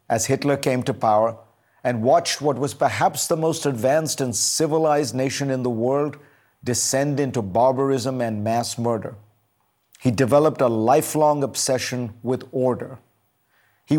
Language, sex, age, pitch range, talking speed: English, male, 50-69, 120-145 Hz, 140 wpm